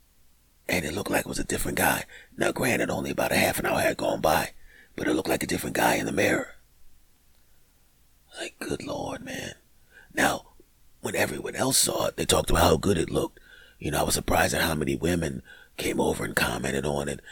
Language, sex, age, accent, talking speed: English, male, 40-59, American, 215 wpm